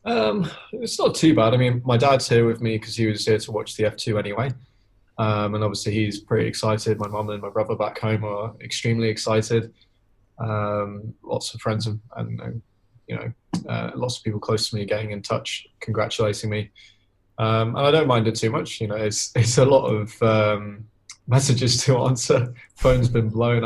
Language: English